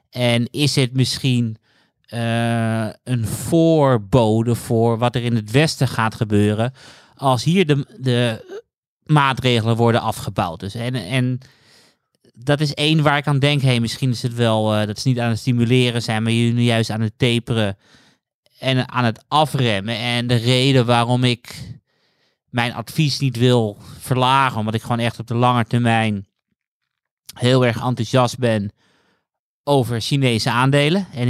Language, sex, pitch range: Dutch, male, 115-130 Hz